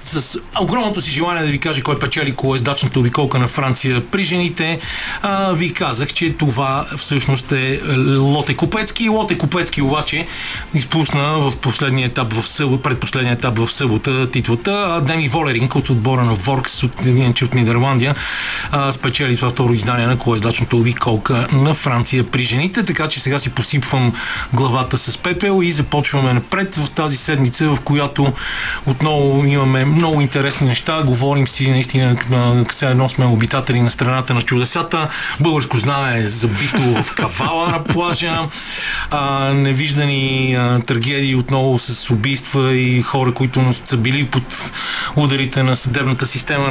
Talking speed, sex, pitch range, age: 145 wpm, male, 125-150 Hz, 40-59